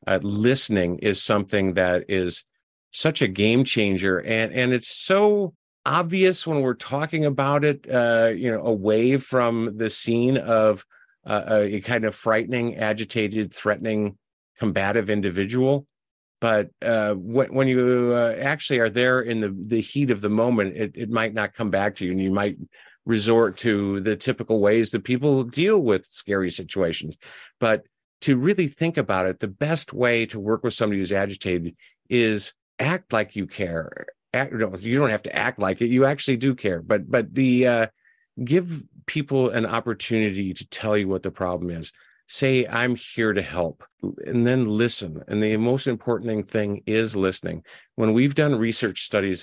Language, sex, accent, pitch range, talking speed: English, male, American, 100-125 Hz, 170 wpm